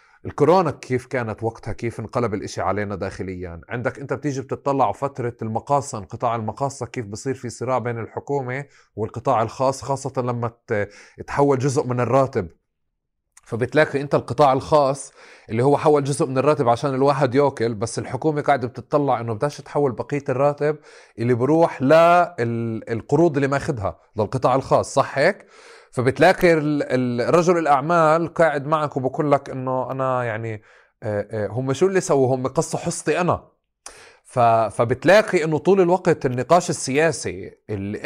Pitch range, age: 115-145 Hz, 30-49